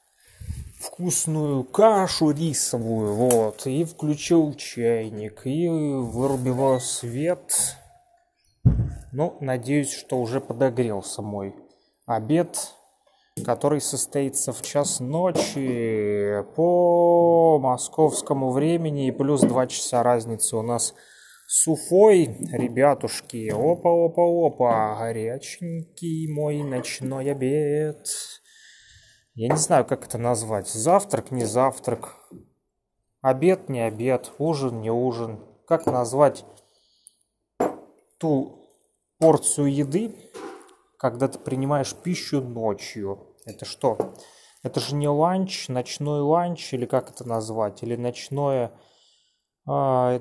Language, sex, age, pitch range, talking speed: Russian, male, 20-39, 120-160 Hz, 95 wpm